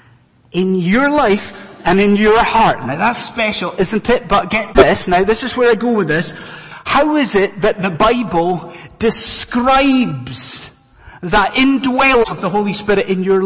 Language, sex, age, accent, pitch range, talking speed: English, male, 30-49, British, 170-230 Hz, 170 wpm